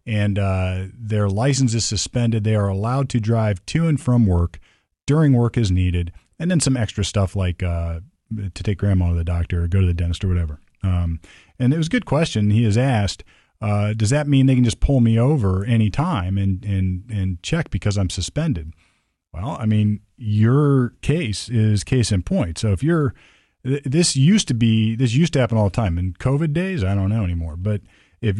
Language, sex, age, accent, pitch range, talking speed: English, male, 40-59, American, 95-125 Hz, 210 wpm